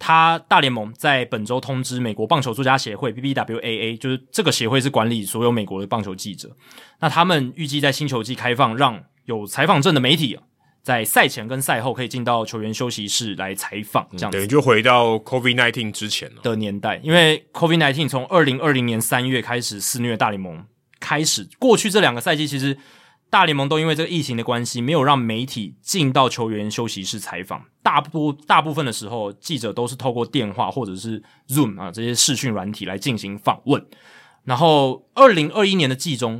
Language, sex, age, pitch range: Chinese, male, 20-39, 110-150 Hz